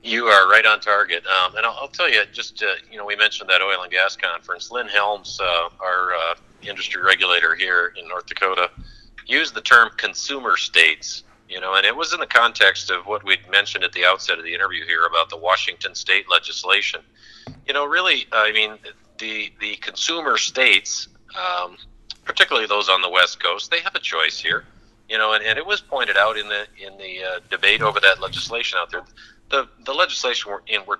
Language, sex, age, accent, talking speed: English, male, 50-69, American, 210 wpm